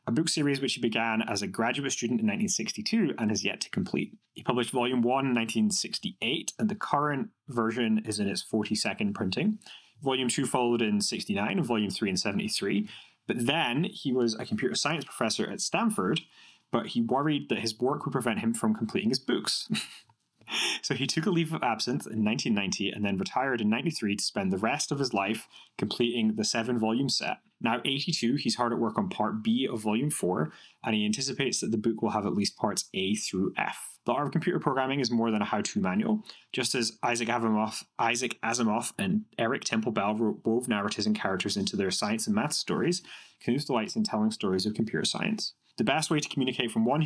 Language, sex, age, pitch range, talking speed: English, male, 20-39, 110-170 Hz, 210 wpm